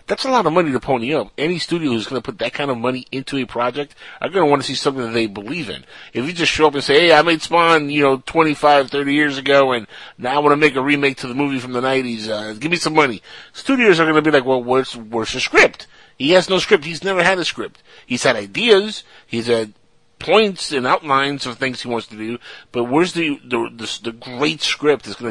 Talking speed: 255 wpm